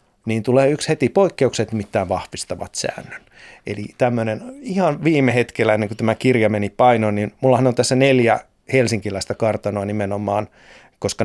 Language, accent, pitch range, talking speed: Finnish, native, 105-135 Hz, 150 wpm